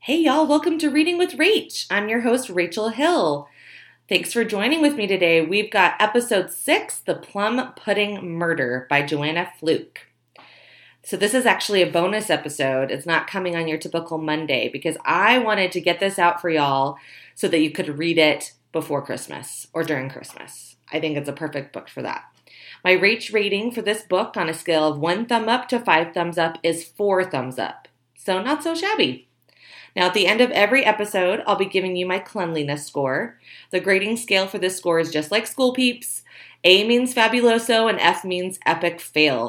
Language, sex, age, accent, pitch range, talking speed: English, female, 30-49, American, 160-220 Hz, 195 wpm